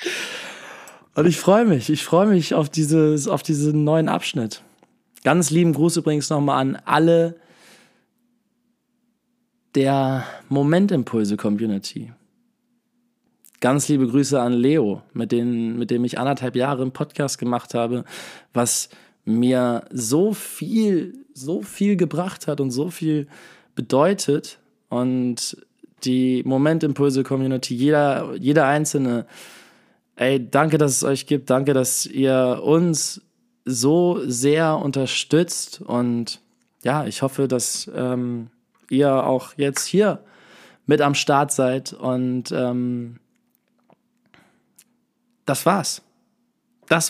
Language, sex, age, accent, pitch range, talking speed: German, male, 20-39, German, 130-180 Hz, 110 wpm